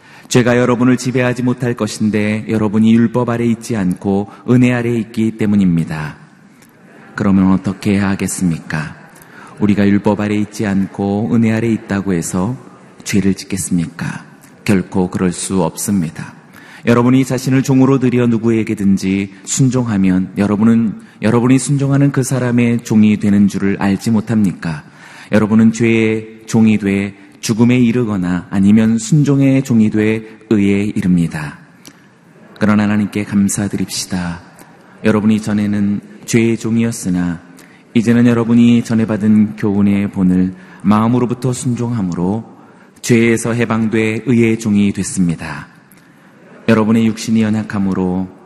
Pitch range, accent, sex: 100-115 Hz, native, male